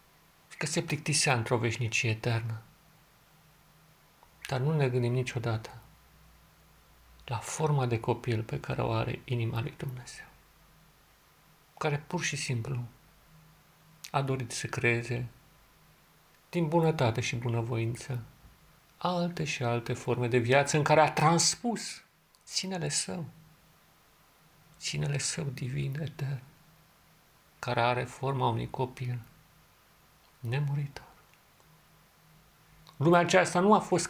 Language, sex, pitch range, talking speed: Romanian, male, 125-155 Hz, 105 wpm